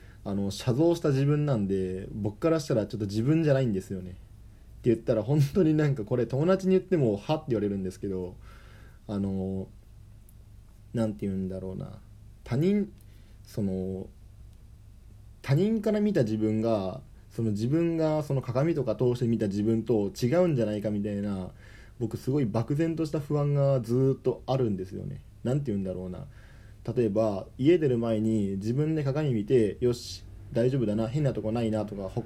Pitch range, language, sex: 105-135 Hz, Japanese, male